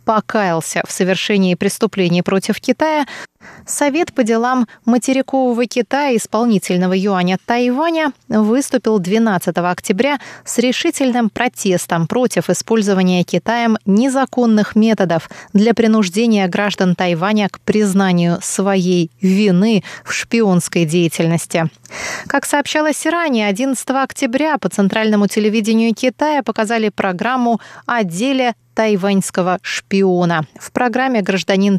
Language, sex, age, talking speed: Russian, female, 20-39, 100 wpm